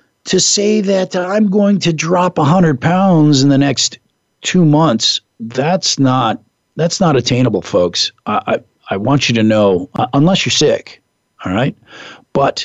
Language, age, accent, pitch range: English, 50-69, American, 105-140 Hz